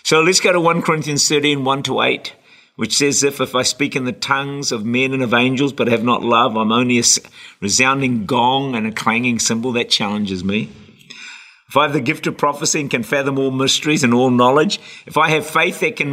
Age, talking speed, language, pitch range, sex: 50-69, 225 wpm, English, 120-180 Hz, male